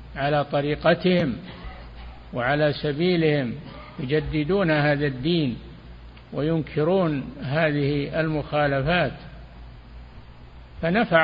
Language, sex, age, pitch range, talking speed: Arabic, male, 60-79, 120-165 Hz, 60 wpm